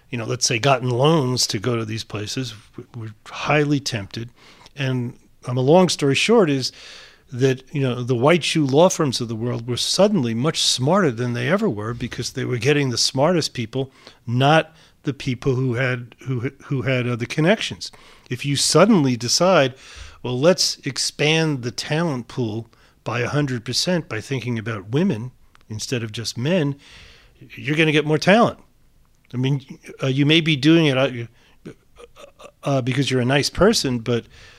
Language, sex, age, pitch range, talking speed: English, male, 40-59, 120-145 Hz, 170 wpm